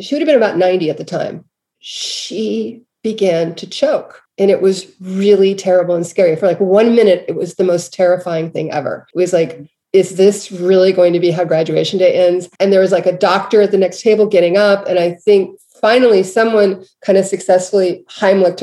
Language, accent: English, American